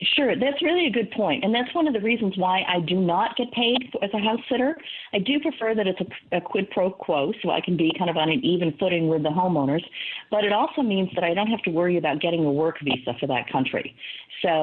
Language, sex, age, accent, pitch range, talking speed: English, female, 40-59, American, 160-210 Hz, 265 wpm